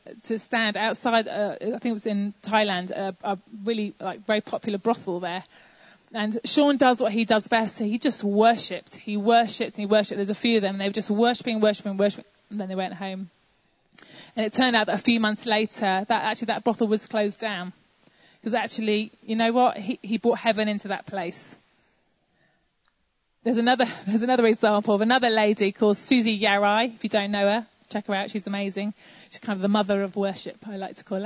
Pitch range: 200-235 Hz